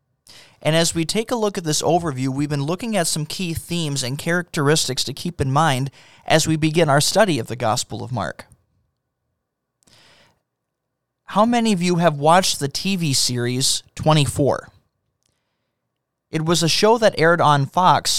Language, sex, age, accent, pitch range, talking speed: English, male, 20-39, American, 130-170 Hz, 165 wpm